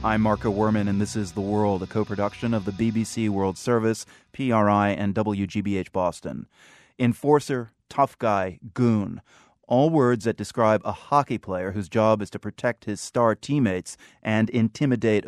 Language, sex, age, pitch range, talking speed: English, male, 30-49, 100-120 Hz, 155 wpm